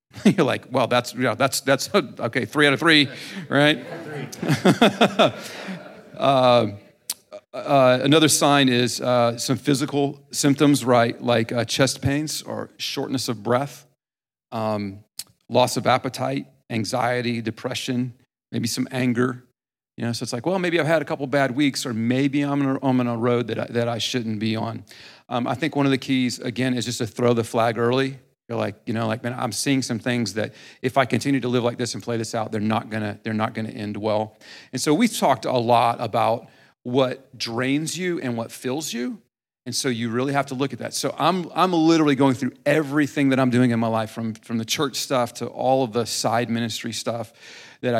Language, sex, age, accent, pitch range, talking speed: English, male, 50-69, American, 115-135 Hz, 200 wpm